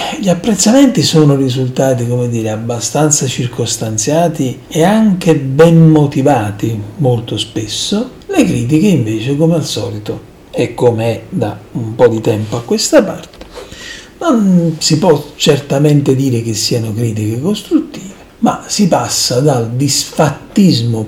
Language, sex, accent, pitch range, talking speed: Italian, male, native, 115-155 Hz, 130 wpm